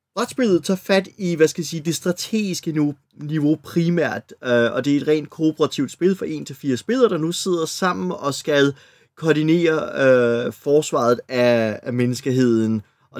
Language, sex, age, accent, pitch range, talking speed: Danish, male, 30-49, native, 130-180 Hz, 160 wpm